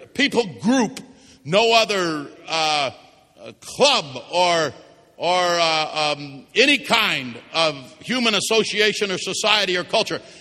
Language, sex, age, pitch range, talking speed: English, male, 60-79, 200-245 Hz, 115 wpm